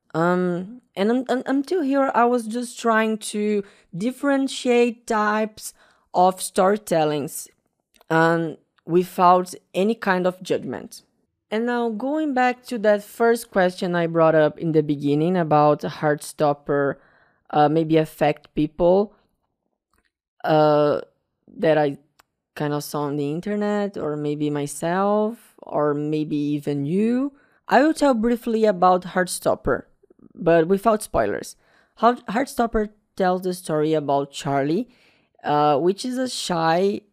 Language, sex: English, female